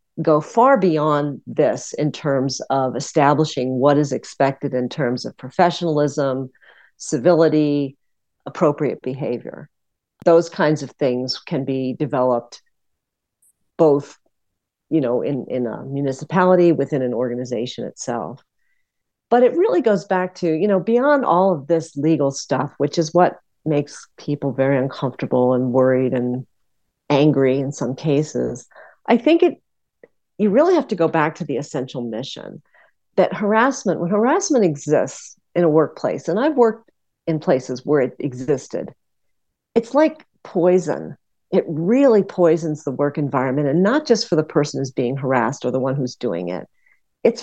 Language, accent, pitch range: English, American, 135-185 Hz